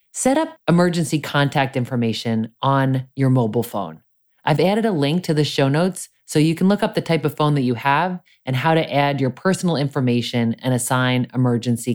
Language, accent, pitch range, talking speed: English, American, 125-170 Hz, 195 wpm